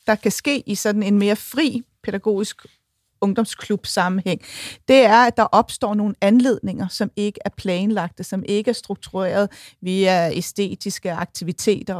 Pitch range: 195-235 Hz